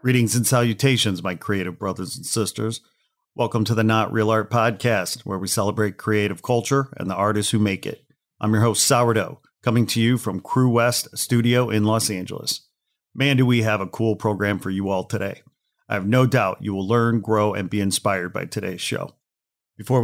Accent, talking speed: American, 200 wpm